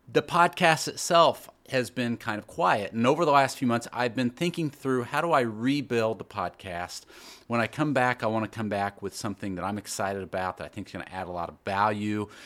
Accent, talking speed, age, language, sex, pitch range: American, 240 wpm, 40-59, English, male, 100-130 Hz